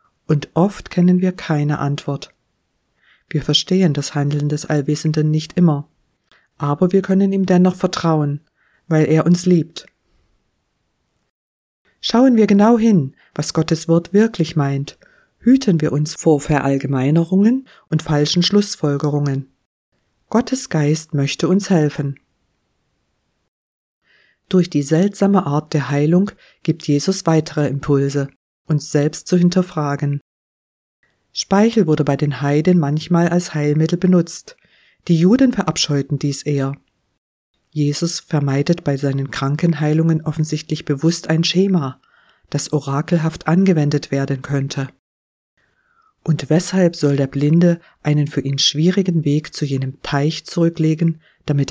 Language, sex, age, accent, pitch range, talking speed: German, female, 50-69, German, 145-175 Hz, 120 wpm